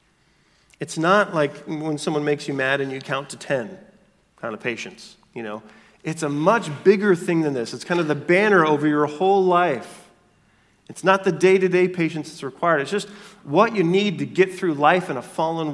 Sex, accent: male, American